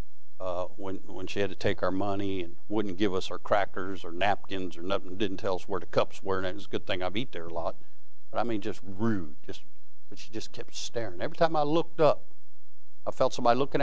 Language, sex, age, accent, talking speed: English, male, 60-79, American, 245 wpm